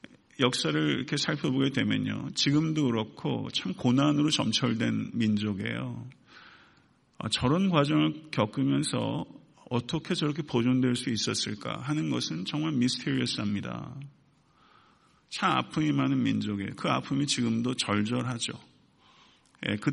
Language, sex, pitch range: Korean, male, 120-145 Hz